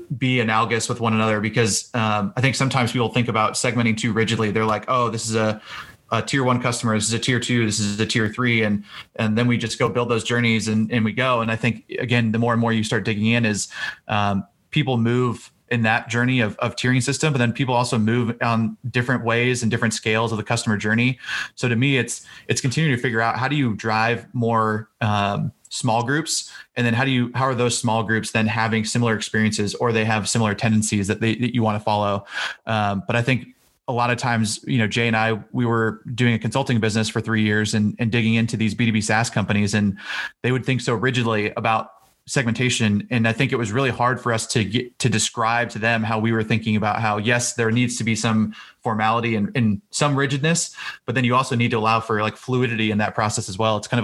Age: 30-49